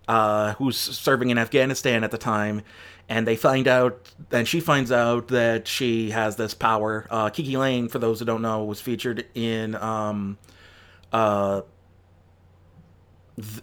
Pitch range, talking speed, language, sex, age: 105-130 Hz, 150 wpm, English, male, 30-49